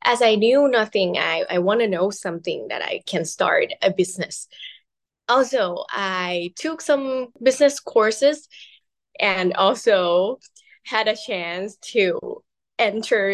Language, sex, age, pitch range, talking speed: English, female, 10-29, 185-235 Hz, 130 wpm